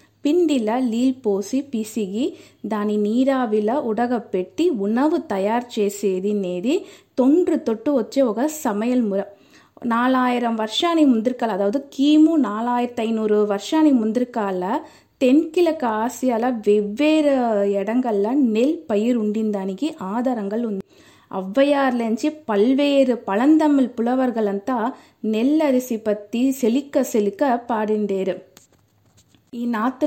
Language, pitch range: Telugu, 210-270 Hz